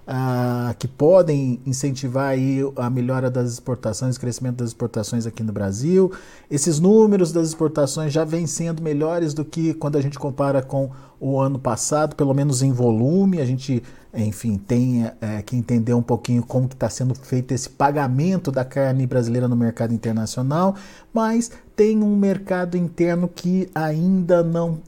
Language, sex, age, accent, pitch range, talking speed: Portuguese, male, 50-69, Brazilian, 130-170 Hz, 160 wpm